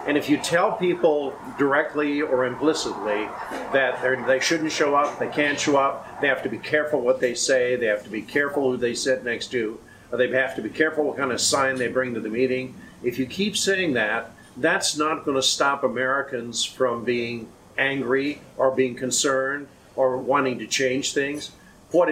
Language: English